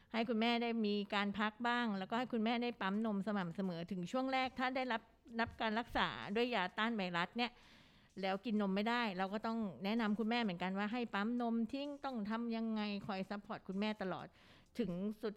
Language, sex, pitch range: Thai, female, 190-230 Hz